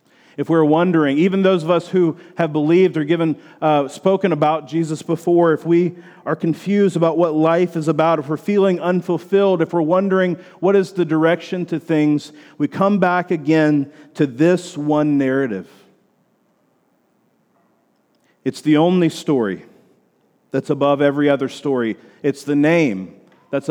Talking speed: 150 wpm